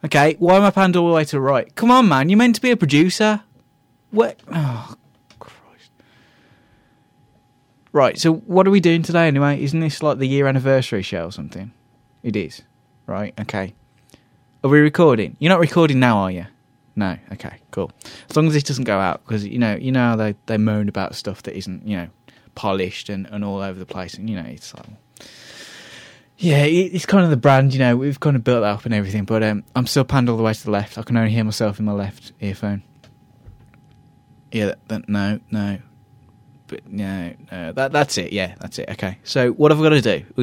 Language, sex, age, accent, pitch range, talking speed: English, male, 20-39, British, 110-150 Hz, 220 wpm